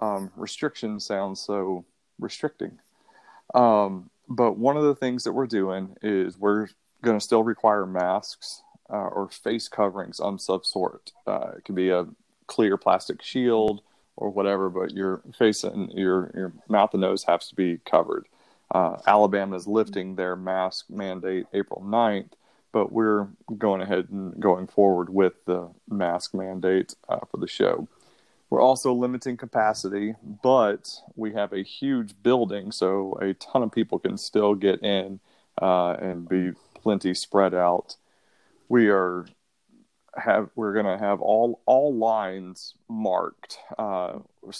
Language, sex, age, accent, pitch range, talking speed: English, male, 30-49, American, 95-105 Hz, 150 wpm